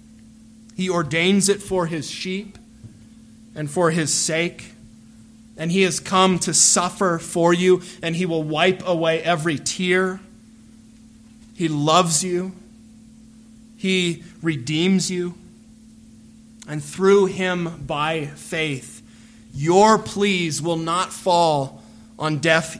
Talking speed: 115 wpm